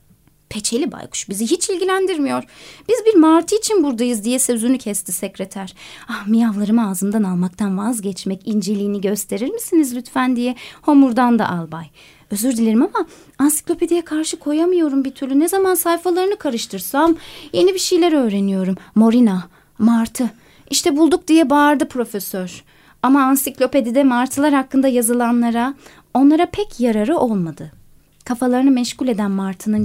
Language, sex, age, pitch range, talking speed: Turkish, female, 30-49, 200-290 Hz, 125 wpm